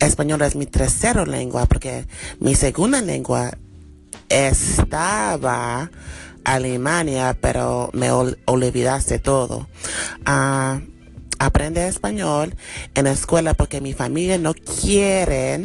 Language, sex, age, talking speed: English, male, 30-49, 105 wpm